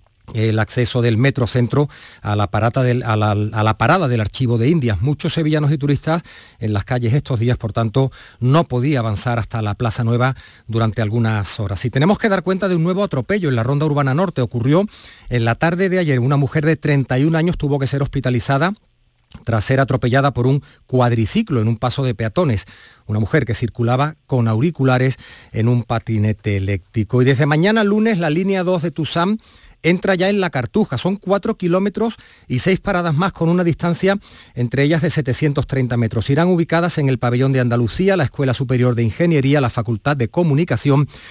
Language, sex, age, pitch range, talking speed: Spanish, male, 40-59, 115-155 Hz, 185 wpm